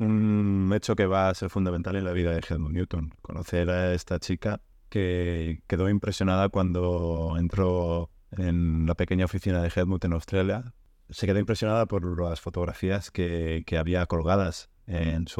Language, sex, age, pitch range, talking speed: Spanish, male, 30-49, 85-100 Hz, 165 wpm